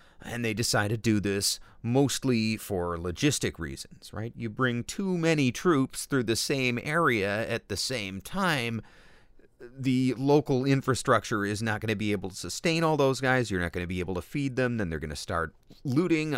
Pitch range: 95-135 Hz